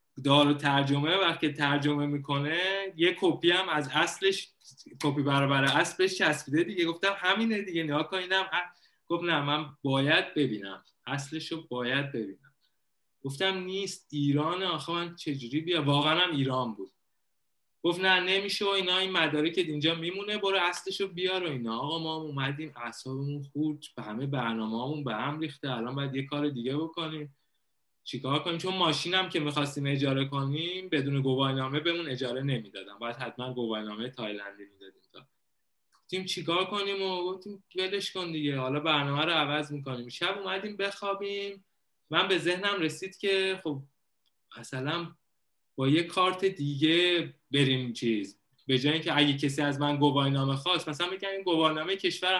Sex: male